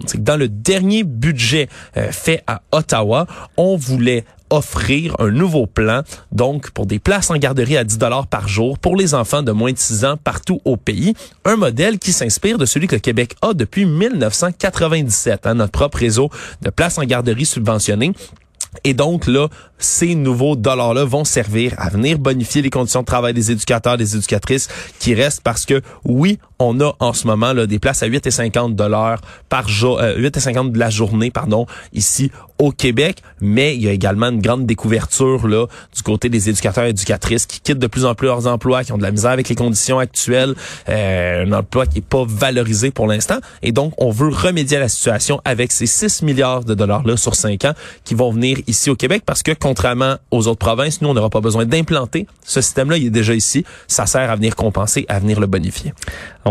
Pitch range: 110-145 Hz